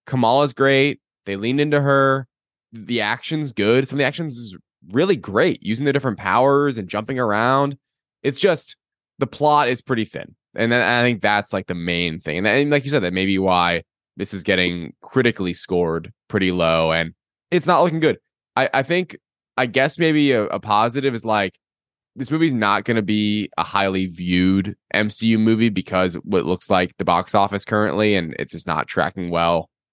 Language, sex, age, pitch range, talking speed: English, male, 20-39, 95-135 Hz, 190 wpm